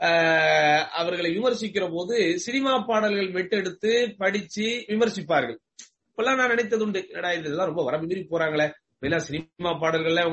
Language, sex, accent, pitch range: English, male, Indian, 145-195 Hz